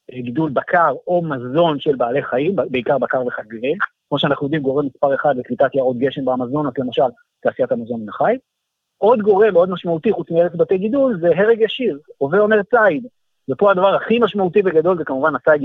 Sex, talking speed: male, 175 wpm